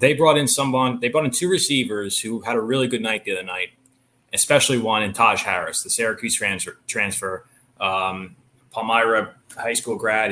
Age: 20-39